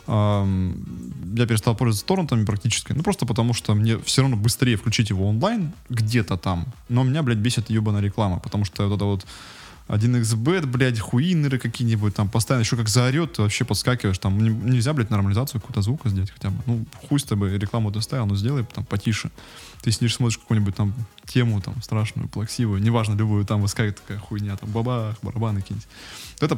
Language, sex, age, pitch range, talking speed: Russian, male, 20-39, 100-125 Hz, 180 wpm